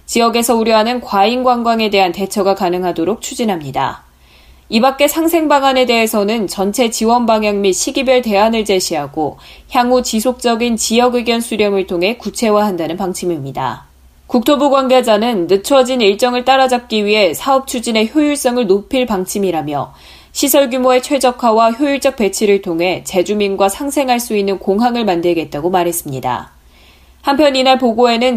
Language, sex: Korean, female